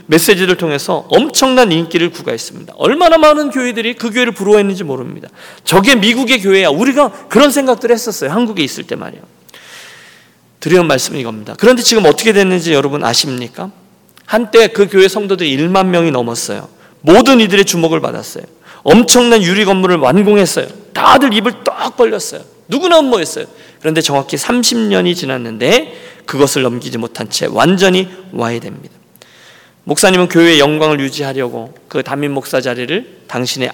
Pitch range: 140-215 Hz